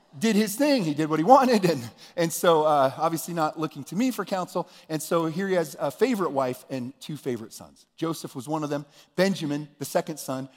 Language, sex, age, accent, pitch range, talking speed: English, male, 40-59, American, 125-160 Hz, 225 wpm